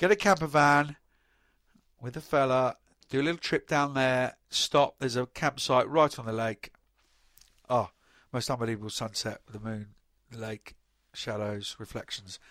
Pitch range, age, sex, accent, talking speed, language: 125-165 Hz, 50-69, male, British, 155 wpm, English